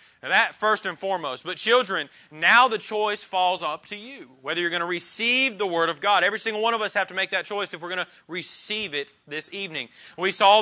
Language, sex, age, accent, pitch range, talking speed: English, male, 30-49, American, 165-200 Hz, 235 wpm